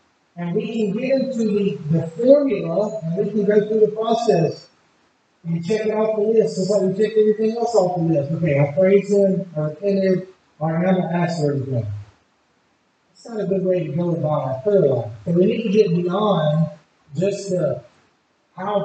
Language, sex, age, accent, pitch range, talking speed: English, male, 30-49, American, 160-205 Hz, 195 wpm